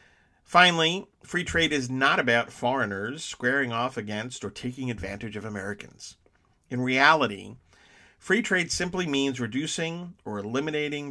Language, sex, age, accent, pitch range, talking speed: English, male, 50-69, American, 110-155 Hz, 130 wpm